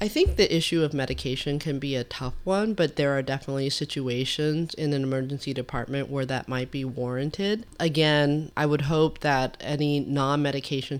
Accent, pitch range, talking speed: American, 130-155 Hz, 175 wpm